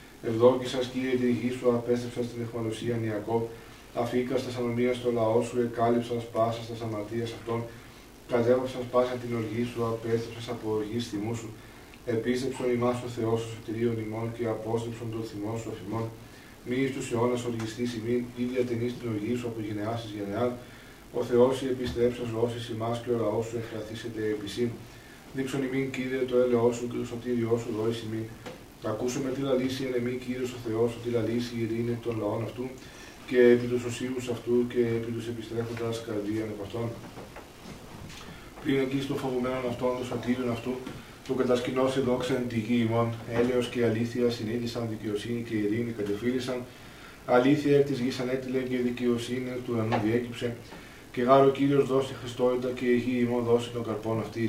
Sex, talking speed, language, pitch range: male, 165 wpm, Greek, 115-125 Hz